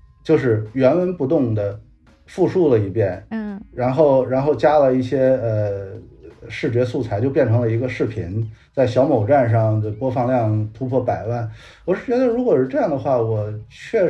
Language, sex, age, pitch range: Chinese, male, 50-69, 110-130 Hz